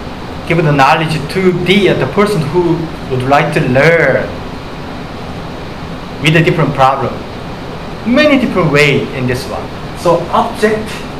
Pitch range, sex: 130-175 Hz, male